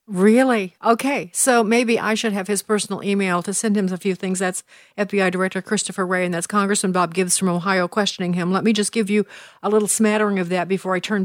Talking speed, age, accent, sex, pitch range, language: 230 wpm, 50-69, American, female, 180-215 Hz, English